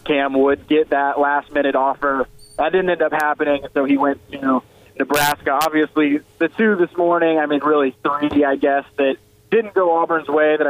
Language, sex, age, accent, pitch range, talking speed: English, male, 20-39, American, 135-155 Hz, 195 wpm